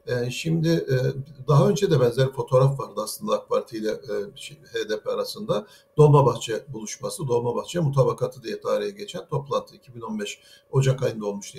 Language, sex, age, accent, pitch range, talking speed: Turkish, male, 60-79, native, 125-160 Hz, 130 wpm